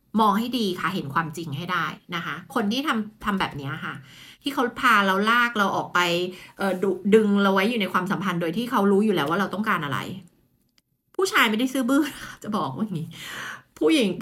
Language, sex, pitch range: Thai, female, 170-240 Hz